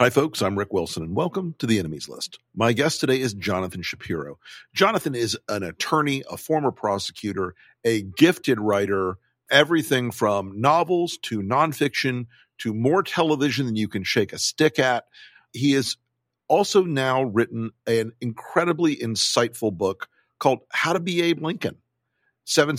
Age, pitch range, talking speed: 50-69, 115-150 Hz, 155 wpm